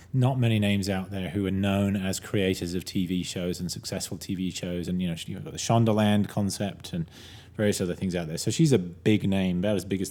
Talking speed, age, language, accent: 245 wpm, 30-49, English, British